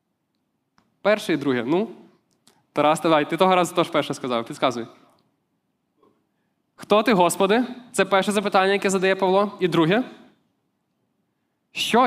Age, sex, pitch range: 20-39, male, 160-205 Hz